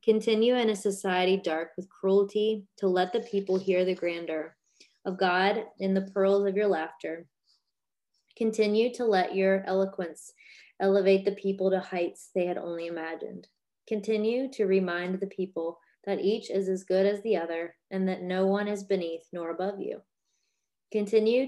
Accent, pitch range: American, 175-205 Hz